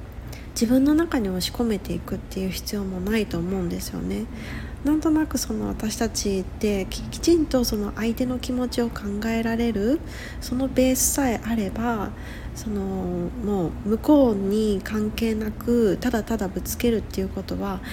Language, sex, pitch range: Japanese, female, 190-240 Hz